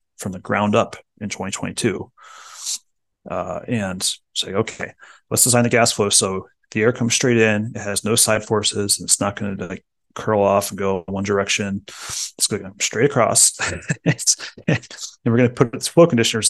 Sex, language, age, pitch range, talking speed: male, English, 30-49, 100-120 Hz, 185 wpm